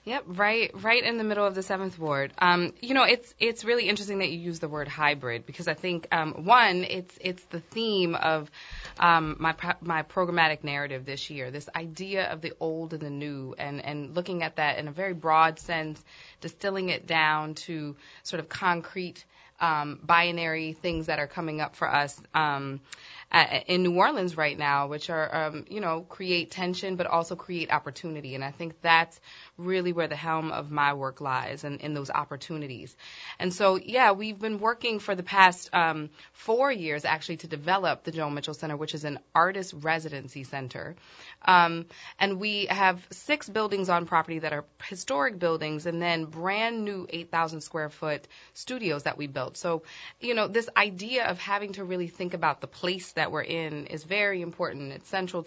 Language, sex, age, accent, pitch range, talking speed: English, female, 20-39, American, 150-185 Hz, 190 wpm